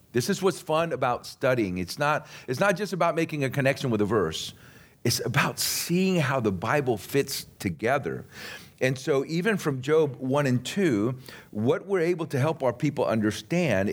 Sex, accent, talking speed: male, American, 180 wpm